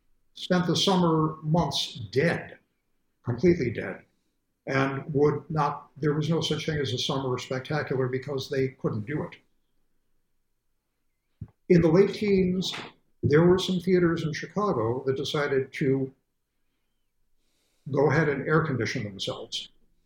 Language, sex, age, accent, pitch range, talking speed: English, male, 60-79, American, 130-165 Hz, 130 wpm